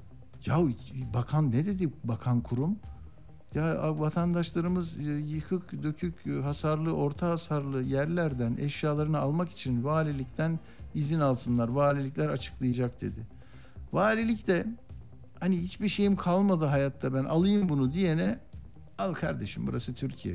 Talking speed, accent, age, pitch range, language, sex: 110 wpm, native, 60-79, 115-155 Hz, Turkish, male